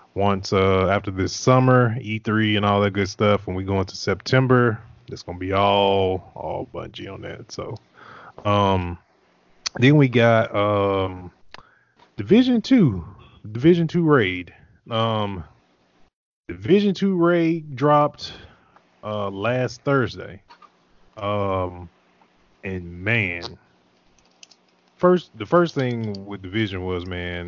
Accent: American